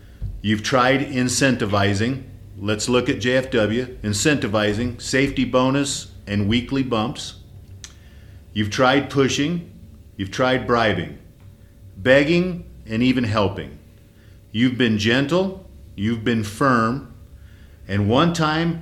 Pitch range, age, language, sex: 100-130 Hz, 40-59, English, male